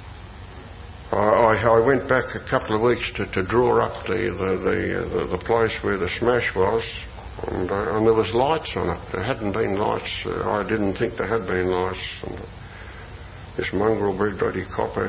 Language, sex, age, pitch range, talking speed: English, male, 60-79, 90-115 Hz, 185 wpm